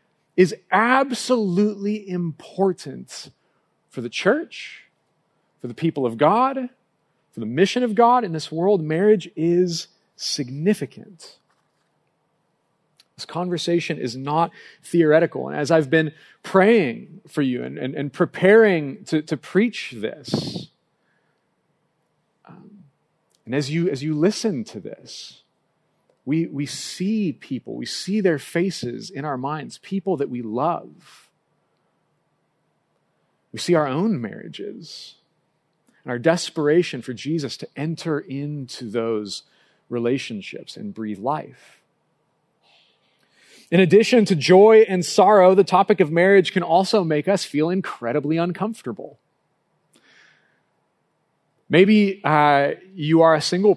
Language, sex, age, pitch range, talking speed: English, male, 40-59, 130-185 Hz, 120 wpm